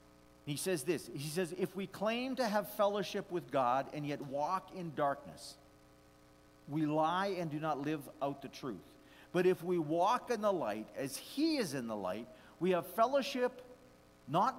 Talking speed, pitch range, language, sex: 180 wpm, 140-200 Hz, English, male